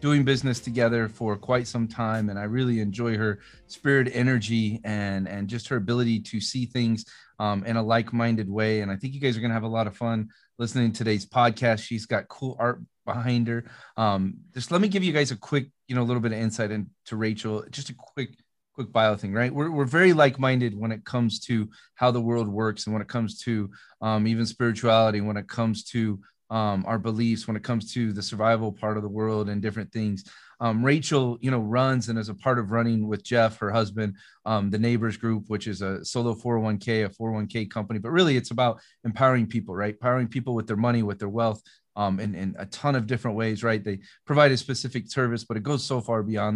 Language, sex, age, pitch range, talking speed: English, male, 30-49, 105-120 Hz, 225 wpm